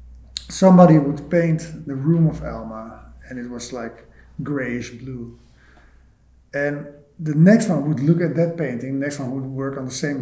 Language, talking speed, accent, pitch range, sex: Czech, 175 wpm, Dutch, 135-175 Hz, male